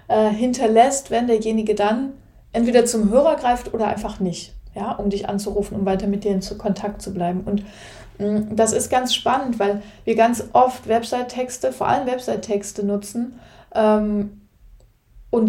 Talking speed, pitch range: 145 wpm, 205-245 Hz